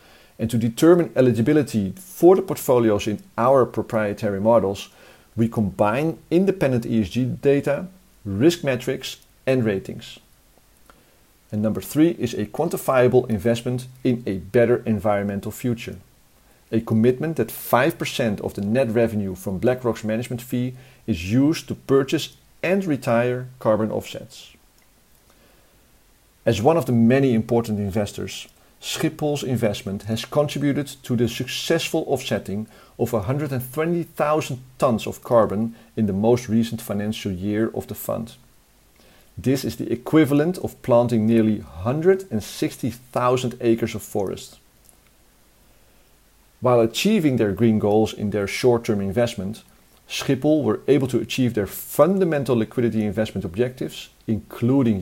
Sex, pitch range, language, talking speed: male, 110-135 Hz, English, 120 wpm